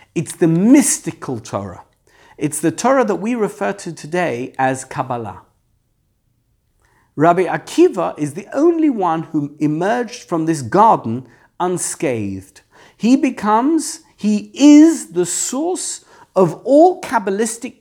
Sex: male